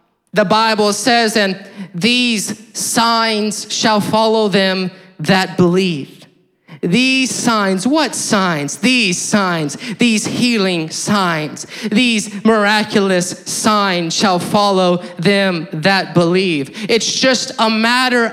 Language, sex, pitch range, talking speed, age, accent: English, male, 200-245 Hz, 105 wpm, 30-49, American